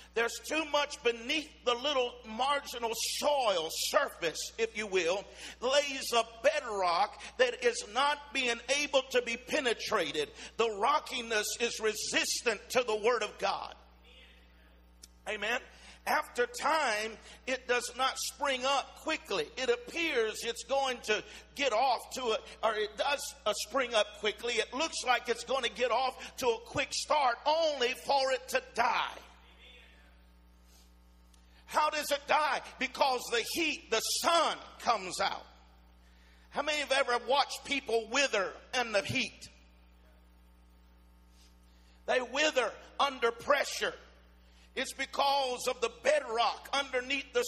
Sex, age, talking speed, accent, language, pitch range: male, 50-69, 135 wpm, American, English, 190-275 Hz